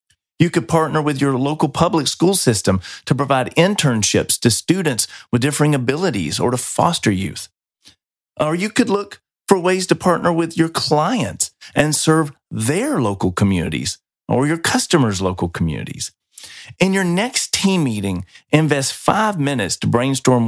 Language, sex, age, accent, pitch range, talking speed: English, male, 40-59, American, 105-150 Hz, 150 wpm